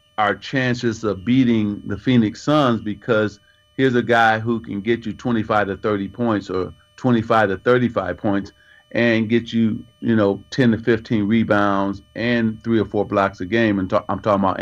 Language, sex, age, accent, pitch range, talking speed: English, male, 40-59, American, 100-130 Hz, 180 wpm